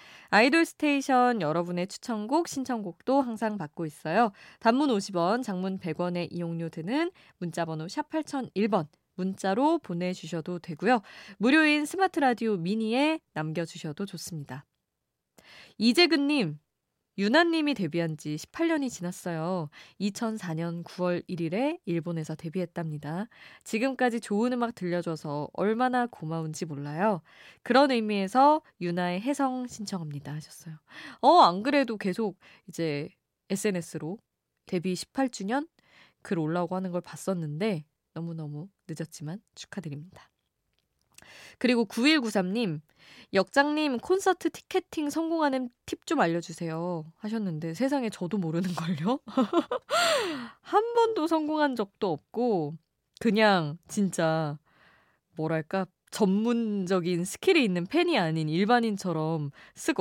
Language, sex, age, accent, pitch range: Korean, female, 20-39, native, 165-250 Hz